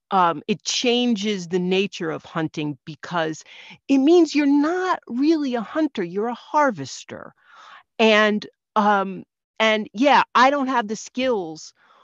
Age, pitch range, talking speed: 40-59, 165-220 Hz, 135 wpm